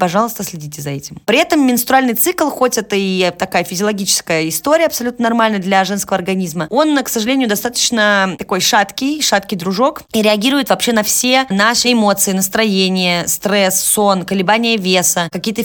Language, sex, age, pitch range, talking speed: Russian, female, 20-39, 185-235 Hz, 155 wpm